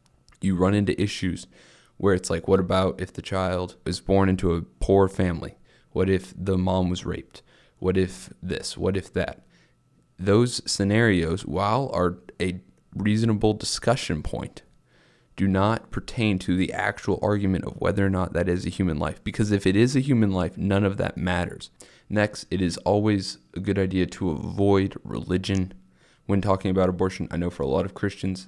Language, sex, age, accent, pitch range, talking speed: English, male, 20-39, American, 90-105 Hz, 180 wpm